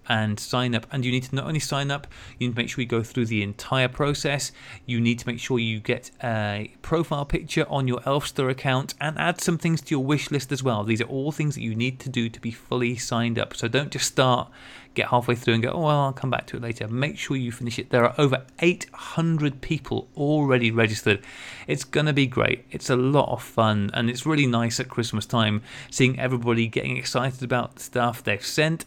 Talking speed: 235 wpm